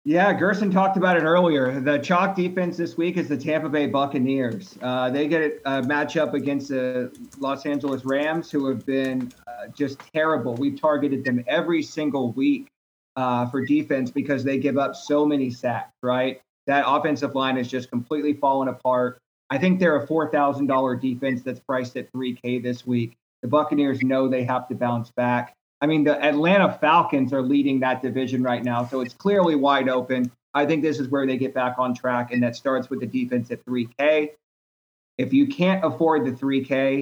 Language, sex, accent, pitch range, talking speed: English, male, American, 125-150 Hz, 190 wpm